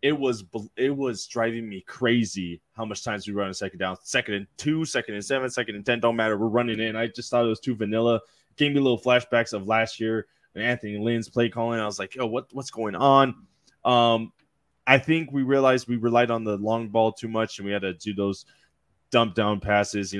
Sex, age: male, 20-39